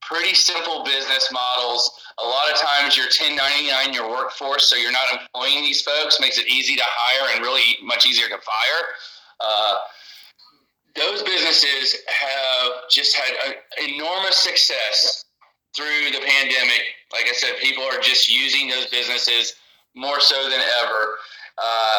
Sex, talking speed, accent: male, 150 wpm, American